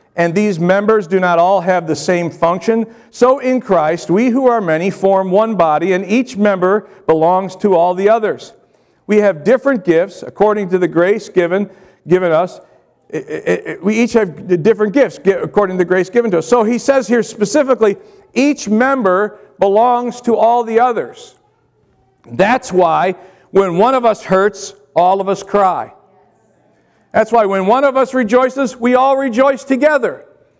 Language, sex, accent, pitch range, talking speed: English, male, American, 195-250 Hz, 165 wpm